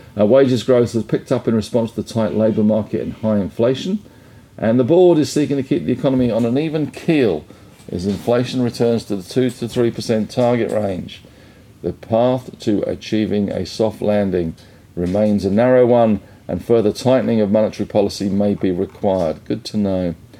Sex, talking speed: male, 180 wpm